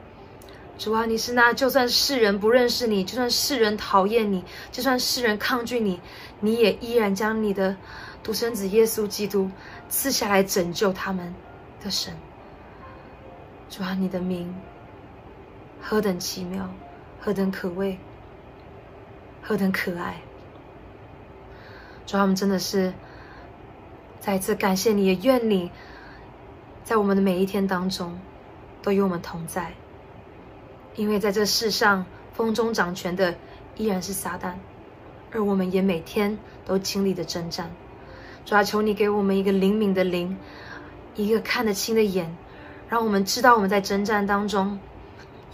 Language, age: Chinese, 20-39